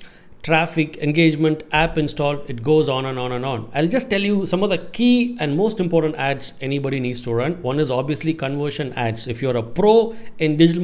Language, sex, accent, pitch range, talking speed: English, male, Indian, 140-175 Hz, 210 wpm